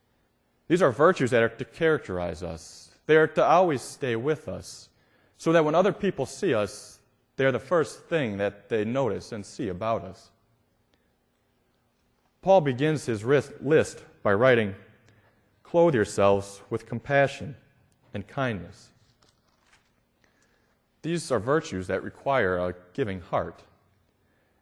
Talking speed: 130 wpm